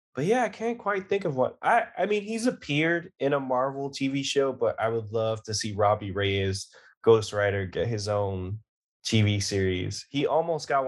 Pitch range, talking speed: 100-120 Hz, 200 wpm